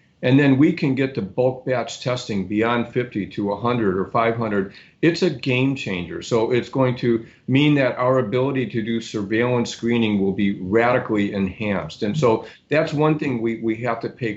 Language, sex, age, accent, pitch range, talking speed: English, male, 50-69, American, 105-130 Hz, 190 wpm